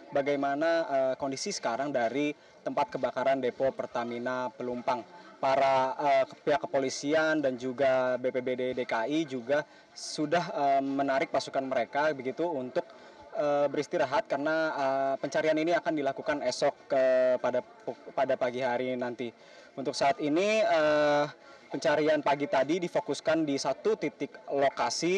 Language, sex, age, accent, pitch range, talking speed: Indonesian, male, 20-39, native, 135-175 Hz, 125 wpm